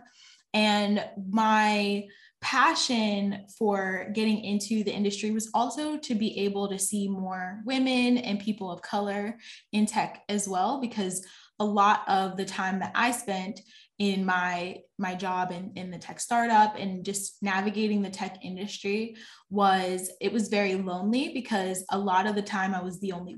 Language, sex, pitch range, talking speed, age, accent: English, female, 190-215 Hz, 165 wpm, 10-29, American